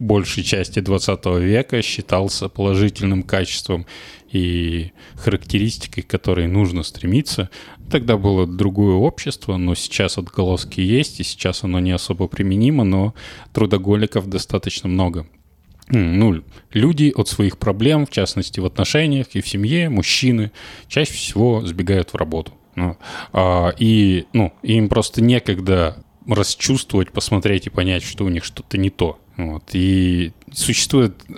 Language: Russian